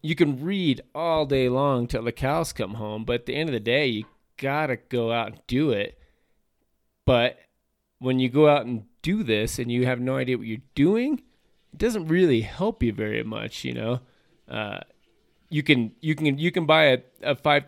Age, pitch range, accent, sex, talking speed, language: 20-39, 120-150 Hz, American, male, 205 wpm, English